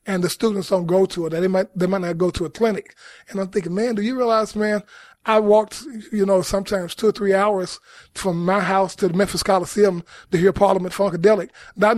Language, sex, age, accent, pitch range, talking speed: English, male, 20-39, American, 180-210 Hz, 225 wpm